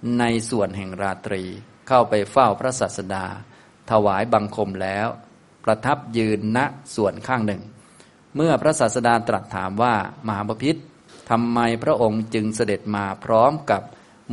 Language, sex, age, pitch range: Thai, male, 20-39, 105-120 Hz